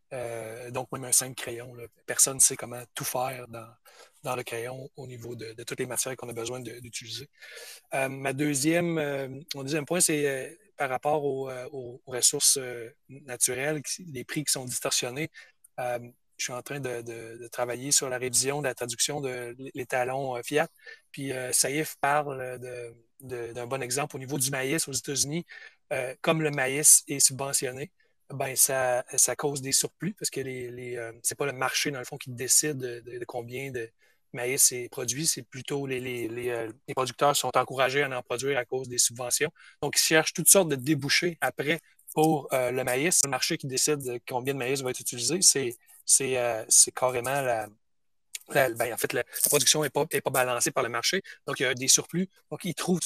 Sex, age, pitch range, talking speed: male, 30-49, 125-145 Hz, 200 wpm